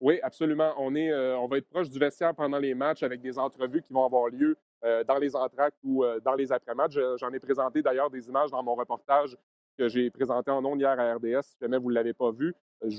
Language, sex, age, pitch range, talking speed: French, male, 30-49, 125-150 Hz, 265 wpm